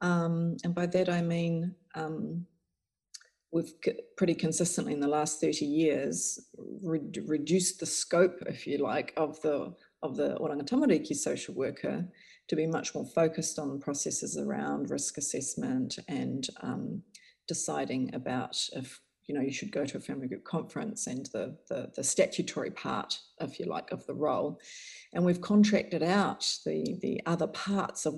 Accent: Australian